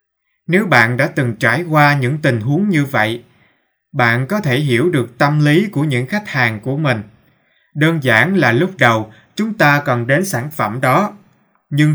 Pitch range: 120-170 Hz